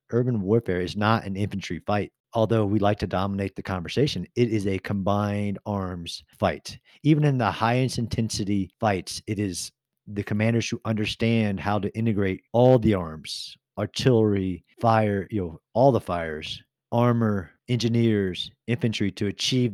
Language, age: English, 40-59